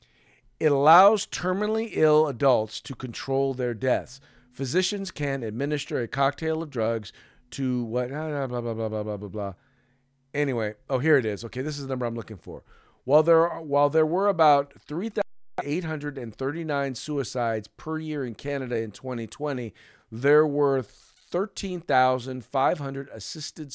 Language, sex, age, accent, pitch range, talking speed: English, male, 50-69, American, 115-145 Hz, 145 wpm